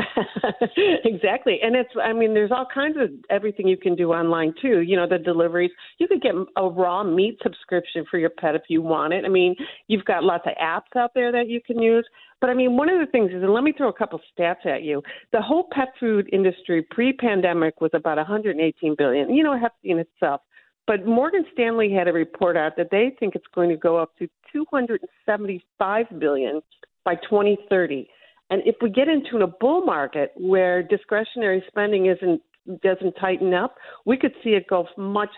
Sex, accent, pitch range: female, American, 175-235 Hz